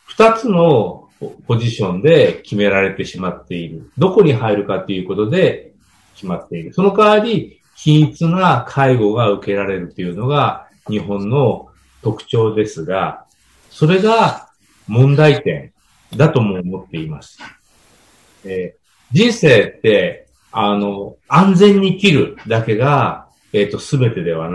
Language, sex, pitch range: English, male, 100-150 Hz